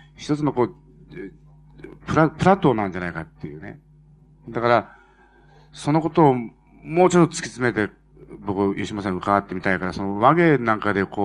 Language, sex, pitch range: Japanese, male, 105-150 Hz